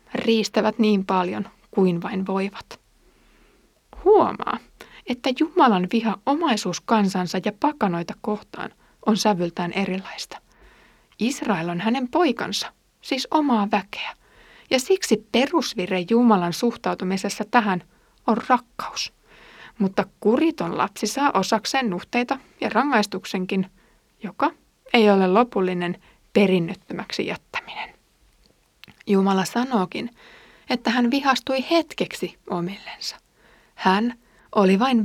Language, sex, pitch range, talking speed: Finnish, female, 190-240 Hz, 100 wpm